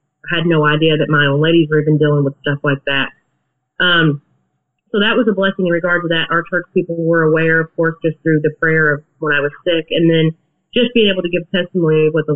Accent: American